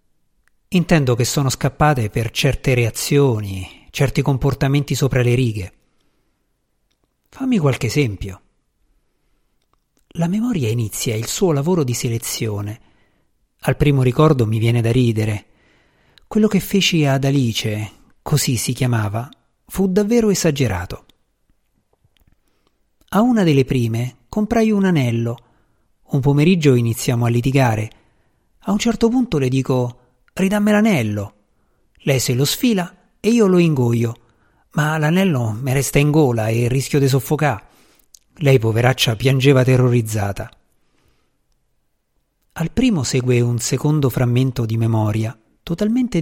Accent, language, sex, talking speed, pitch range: native, Italian, male, 120 wpm, 115-155 Hz